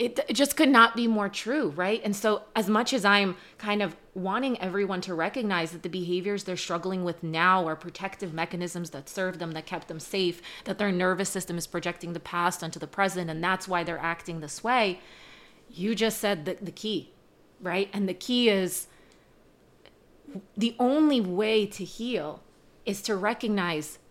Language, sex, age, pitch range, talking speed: English, female, 30-49, 175-215 Hz, 185 wpm